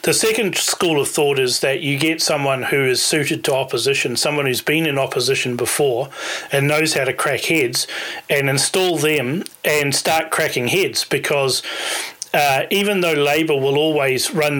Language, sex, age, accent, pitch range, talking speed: English, male, 40-59, Australian, 135-160 Hz, 175 wpm